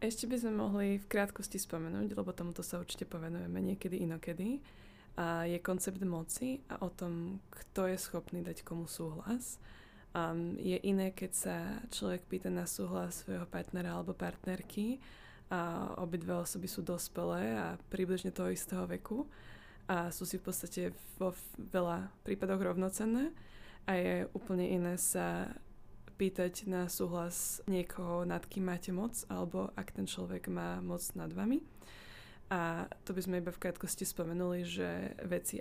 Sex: female